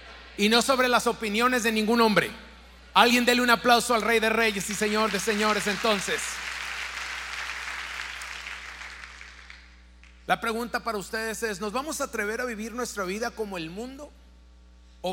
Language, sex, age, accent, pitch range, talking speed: Spanish, male, 40-59, Mexican, 180-235 Hz, 155 wpm